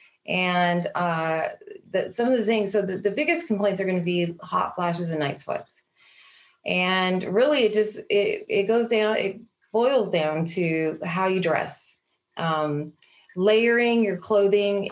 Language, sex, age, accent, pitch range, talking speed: English, female, 30-49, American, 175-220 Hz, 155 wpm